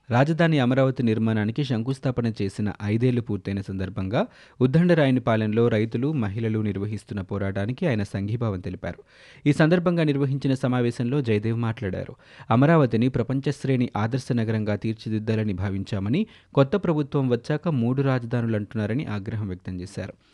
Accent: native